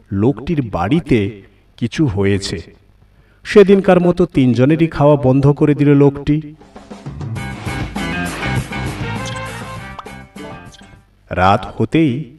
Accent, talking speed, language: native, 55 wpm, Bengali